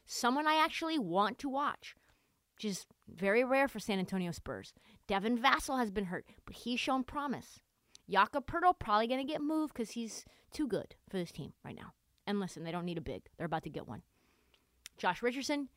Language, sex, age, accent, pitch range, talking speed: English, female, 30-49, American, 170-265 Hz, 200 wpm